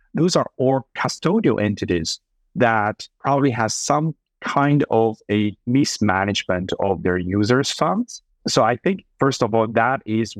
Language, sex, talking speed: English, male, 145 wpm